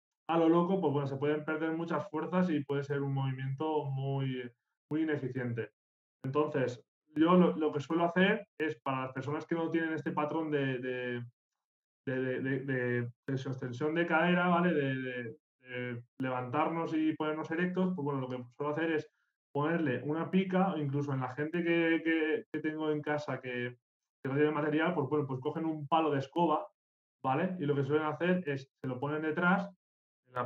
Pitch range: 140-175 Hz